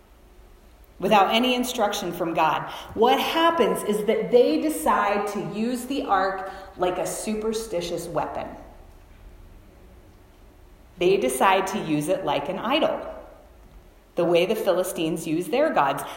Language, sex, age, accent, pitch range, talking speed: English, female, 30-49, American, 175-255 Hz, 125 wpm